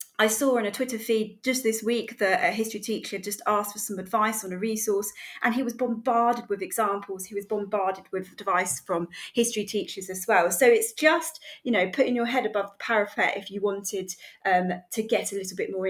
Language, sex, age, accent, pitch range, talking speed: English, female, 30-49, British, 195-240 Hz, 220 wpm